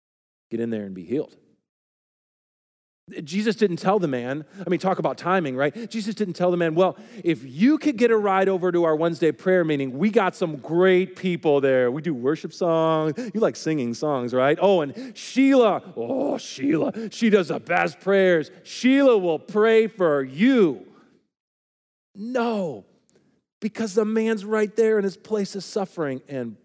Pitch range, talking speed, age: 125-195 Hz, 175 wpm, 40-59